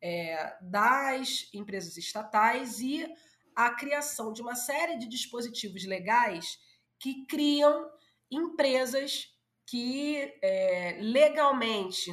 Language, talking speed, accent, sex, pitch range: Portuguese, 85 wpm, Brazilian, female, 210-280 Hz